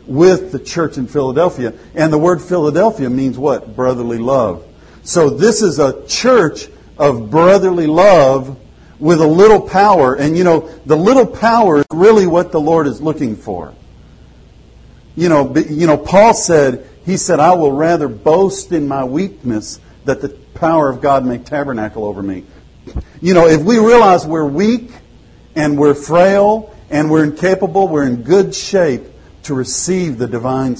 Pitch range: 130-180 Hz